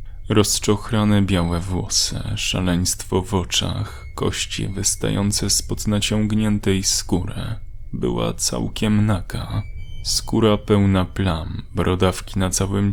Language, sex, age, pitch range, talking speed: Polish, male, 10-29, 95-110 Hz, 95 wpm